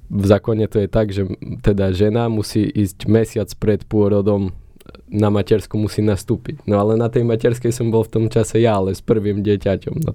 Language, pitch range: Slovak, 95-110 Hz